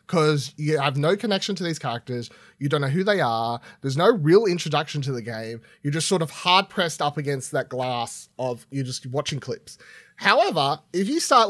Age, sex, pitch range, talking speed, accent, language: 20-39, male, 130-165 Hz, 210 wpm, Australian, English